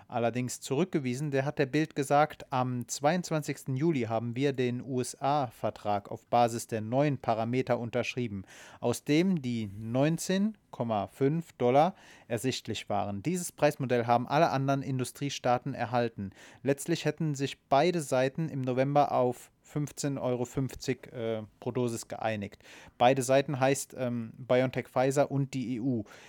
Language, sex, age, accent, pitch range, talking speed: German, male, 30-49, German, 120-145 Hz, 130 wpm